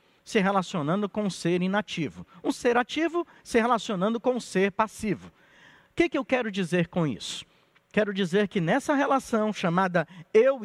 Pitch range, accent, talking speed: 170-240 Hz, Brazilian, 165 wpm